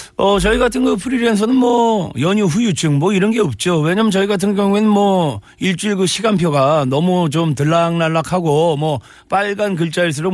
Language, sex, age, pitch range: Korean, male, 40-59, 150-205 Hz